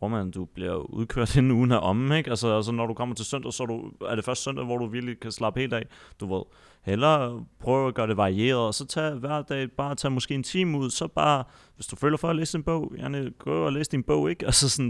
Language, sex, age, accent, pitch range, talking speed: Danish, male, 30-49, native, 105-130 Hz, 265 wpm